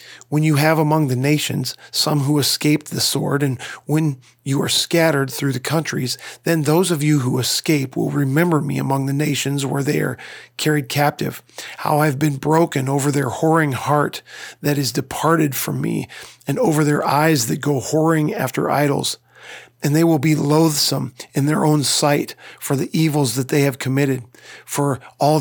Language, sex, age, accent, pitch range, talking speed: English, male, 40-59, American, 135-155 Hz, 180 wpm